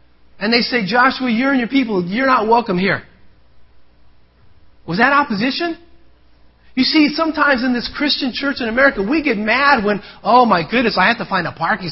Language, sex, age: English, male, 40-59